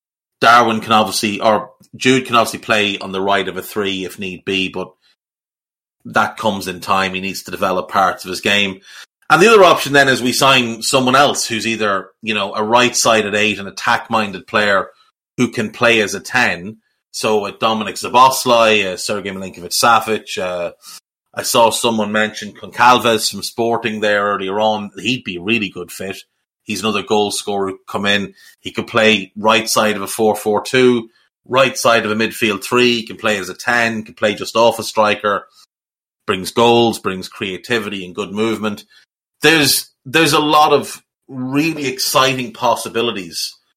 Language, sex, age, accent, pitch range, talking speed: English, male, 30-49, Irish, 100-120 Hz, 175 wpm